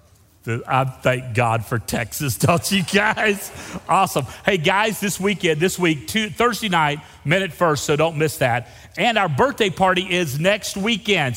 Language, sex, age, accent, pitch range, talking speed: English, male, 40-59, American, 115-185 Hz, 165 wpm